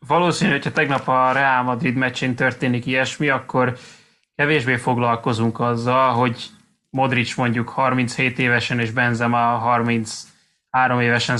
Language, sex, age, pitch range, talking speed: Hungarian, male, 20-39, 120-140 Hz, 115 wpm